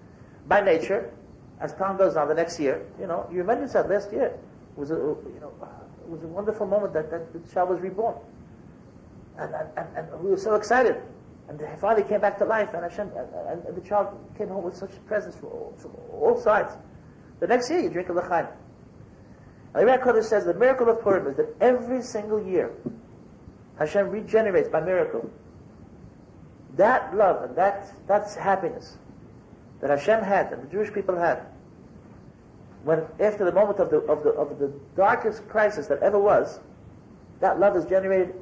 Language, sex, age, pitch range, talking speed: English, male, 50-69, 160-215 Hz, 185 wpm